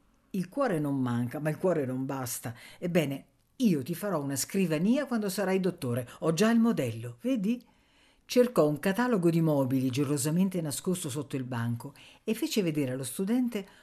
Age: 50-69